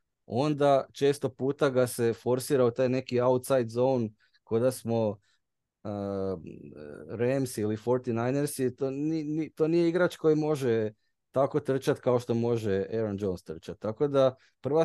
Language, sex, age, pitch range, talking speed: Croatian, male, 20-39, 110-140 Hz, 145 wpm